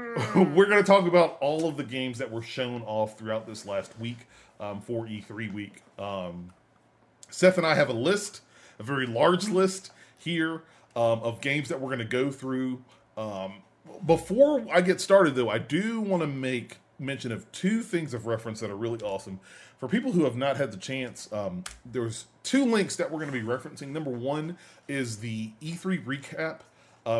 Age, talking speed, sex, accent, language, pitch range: 30-49, 195 wpm, male, American, English, 115-160 Hz